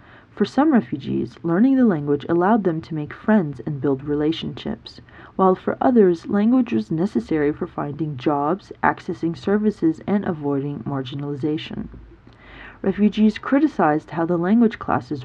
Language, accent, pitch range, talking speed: English, American, 150-215 Hz, 135 wpm